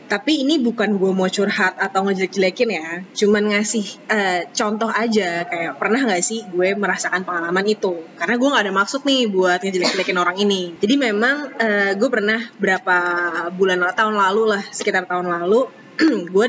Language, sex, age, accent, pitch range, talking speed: Indonesian, female, 20-39, native, 190-250 Hz, 165 wpm